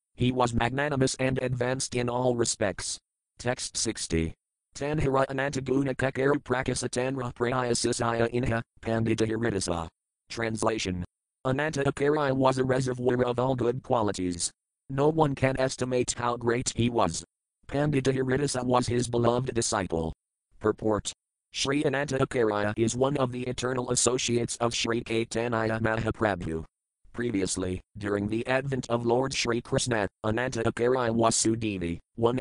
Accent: American